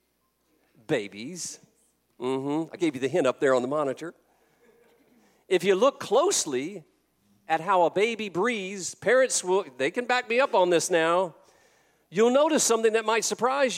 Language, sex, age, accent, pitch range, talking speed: English, male, 50-69, American, 150-225 Hz, 165 wpm